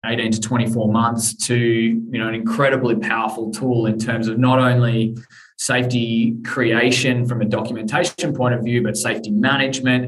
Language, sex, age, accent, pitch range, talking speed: English, male, 20-39, Australian, 115-125 Hz, 160 wpm